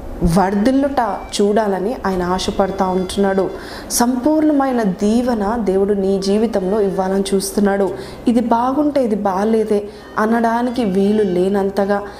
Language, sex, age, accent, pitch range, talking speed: Telugu, female, 20-39, native, 190-230 Hz, 90 wpm